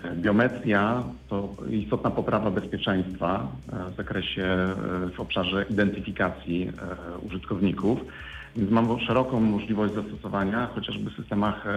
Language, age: Polish, 50-69